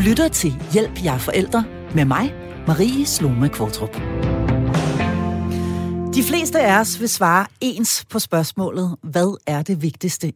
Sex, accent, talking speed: female, native, 135 wpm